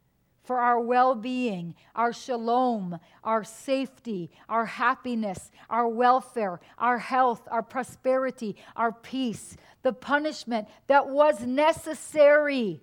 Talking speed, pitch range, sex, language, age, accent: 105 wpm, 240-295 Hz, female, English, 50-69, American